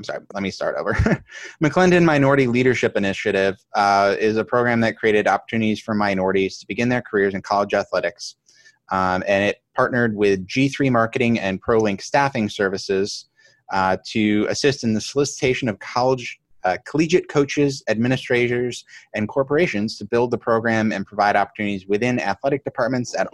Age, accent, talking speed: 20-39, American, 160 wpm